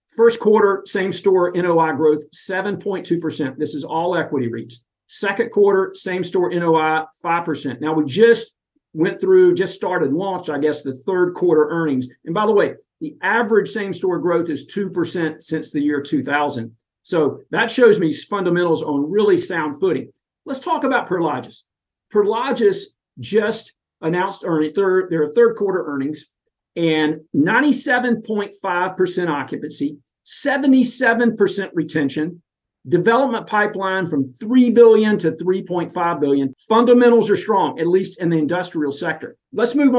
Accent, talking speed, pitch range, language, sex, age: American, 140 wpm, 155-230 Hz, English, male, 50-69